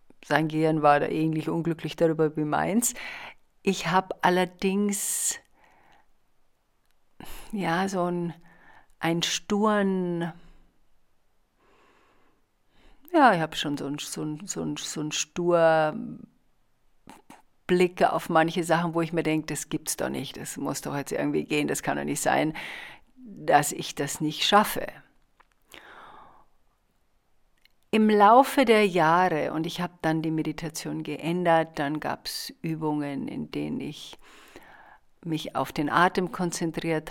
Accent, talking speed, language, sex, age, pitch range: German, 130 wpm, German, female, 50-69, 150-195 Hz